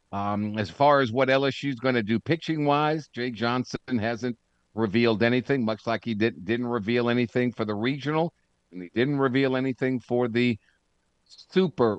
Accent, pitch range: American, 110-140 Hz